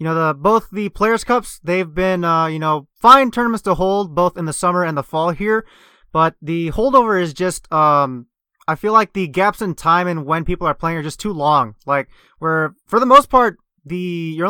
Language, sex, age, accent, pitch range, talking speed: English, male, 20-39, American, 150-195 Hz, 225 wpm